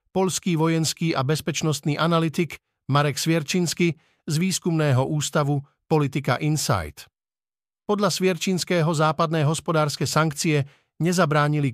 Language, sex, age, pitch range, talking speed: Slovak, male, 50-69, 135-165 Hz, 90 wpm